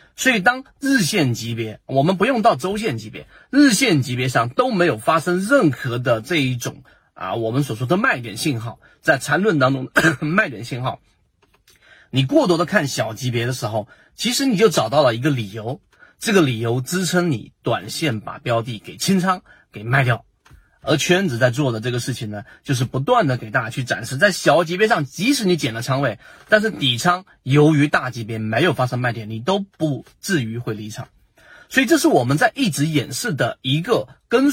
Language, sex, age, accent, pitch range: Chinese, male, 30-49, native, 125-185 Hz